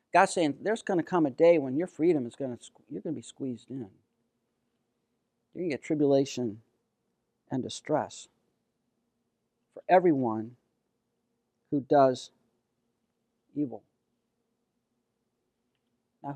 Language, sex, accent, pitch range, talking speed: English, male, American, 130-160 Hz, 120 wpm